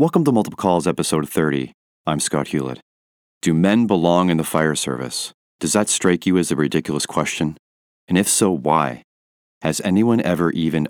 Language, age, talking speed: English, 30-49, 175 wpm